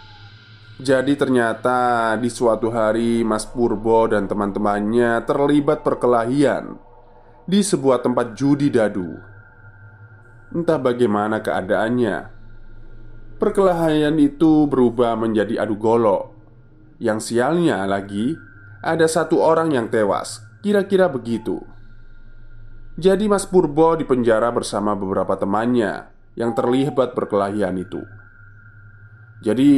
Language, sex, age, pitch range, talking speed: Indonesian, male, 20-39, 110-135 Hz, 95 wpm